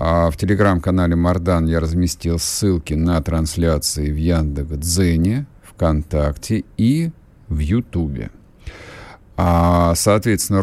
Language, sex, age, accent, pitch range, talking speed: Russian, male, 50-69, native, 80-100 Hz, 90 wpm